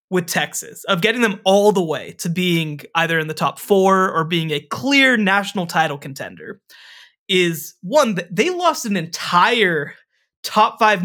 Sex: male